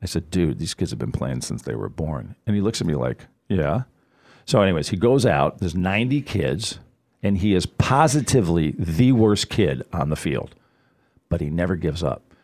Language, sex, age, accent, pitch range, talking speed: English, male, 50-69, American, 80-125 Hz, 205 wpm